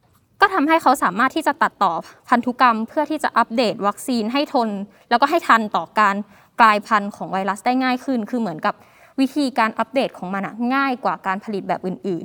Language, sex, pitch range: Thai, female, 205-265 Hz